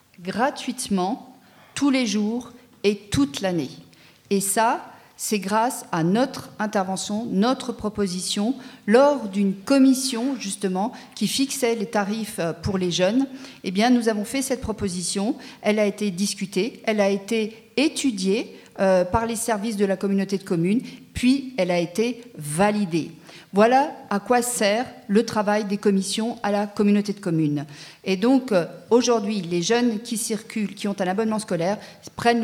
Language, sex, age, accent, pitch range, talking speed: French, female, 40-59, French, 195-235 Hz, 150 wpm